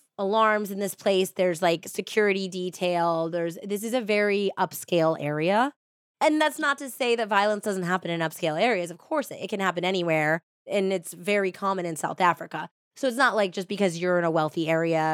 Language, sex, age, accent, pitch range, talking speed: English, female, 20-39, American, 175-225 Hz, 205 wpm